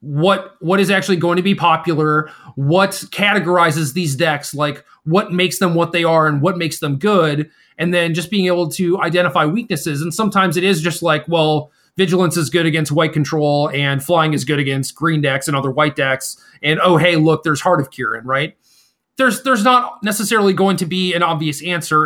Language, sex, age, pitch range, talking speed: English, male, 30-49, 145-185 Hz, 205 wpm